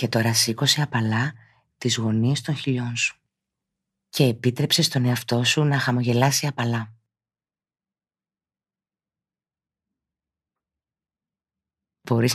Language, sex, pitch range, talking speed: Greek, female, 115-140 Hz, 85 wpm